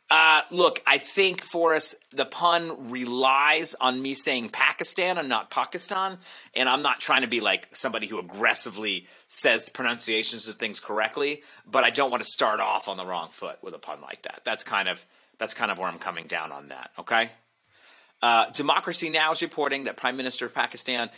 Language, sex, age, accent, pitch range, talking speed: English, male, 30-49, American, 100-145 Hz, 200 wpm